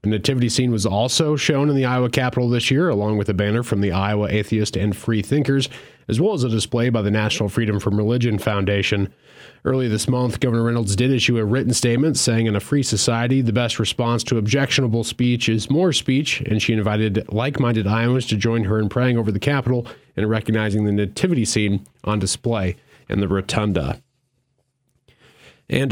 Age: 30-49